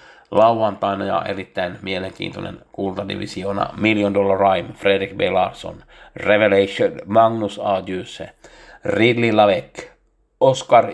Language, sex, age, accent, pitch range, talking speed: Finnish, male, 60-79, native, 95-115 Hz, 100 wpm